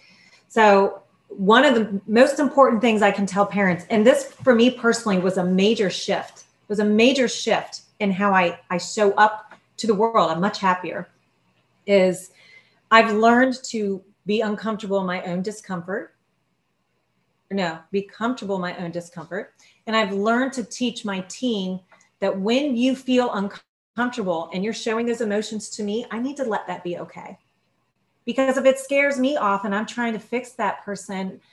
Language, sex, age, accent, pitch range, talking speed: English, female, 30-49, American, 195-235 Hz, 175 wpm